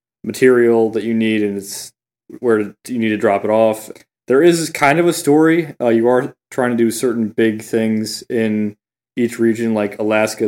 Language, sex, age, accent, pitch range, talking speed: English, male, 20-39, American, 105-120 Hz, 190 wpm